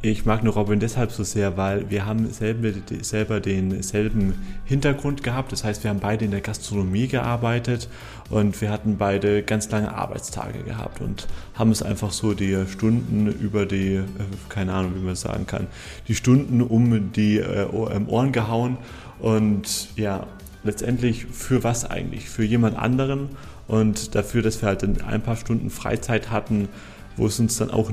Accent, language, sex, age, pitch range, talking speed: German, German, male, 30-49, 100-120 Hz, 170 wpm